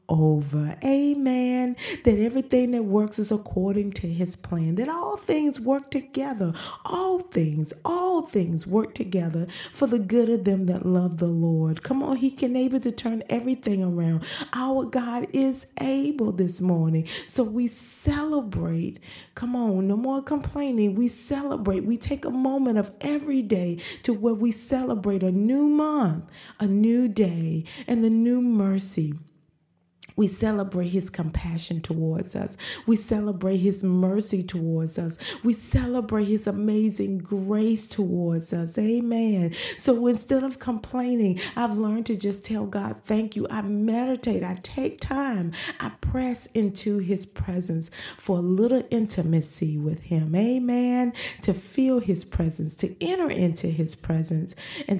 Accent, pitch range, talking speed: American, 175-245 Hz, 150 wpm